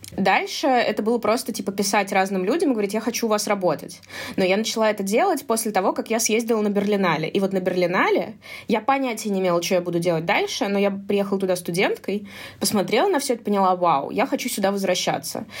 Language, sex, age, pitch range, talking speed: Russian, female, 20-39, 170-205 Hz, 210 wpm